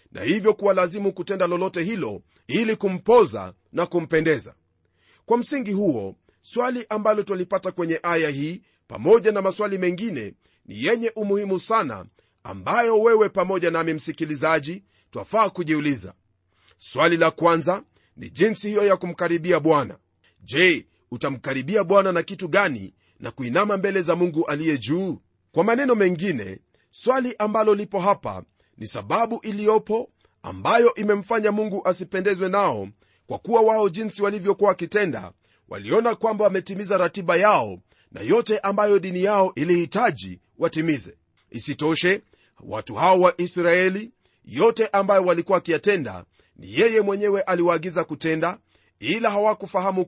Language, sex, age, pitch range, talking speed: Swahili, male, 40-59, 160-210 Hz, 125 wpm